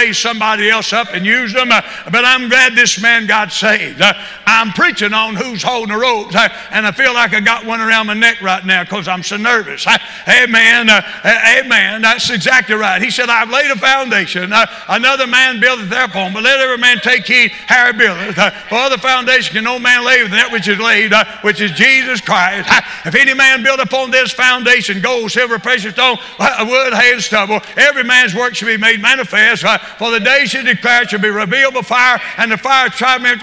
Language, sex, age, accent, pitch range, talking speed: English, male, 60-79, American, 215-255 Hz, 225 wpm